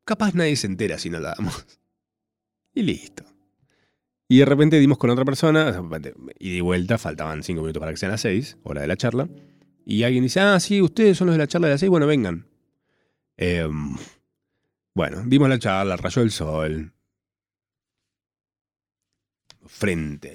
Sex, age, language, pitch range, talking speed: male, 30-49, Spanish, 85-115 Hz, 170 wpm